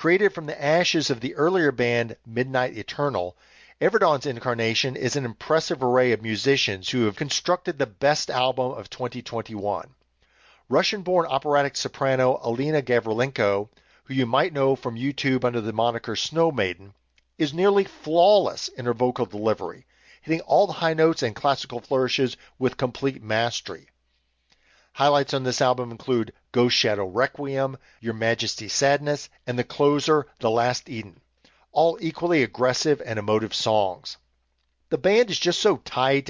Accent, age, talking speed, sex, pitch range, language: American, 50-69, 145 wpm, male, 115-155 Hz, English